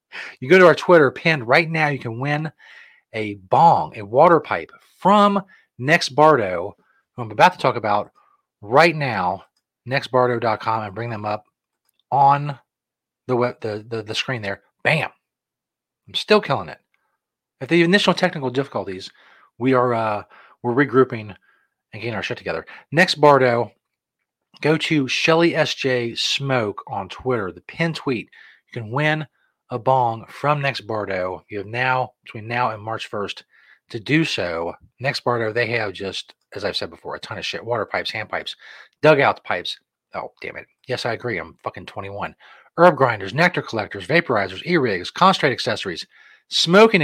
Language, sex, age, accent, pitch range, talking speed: English, male, 30-49, American, 115-150 Hz, 155 wpm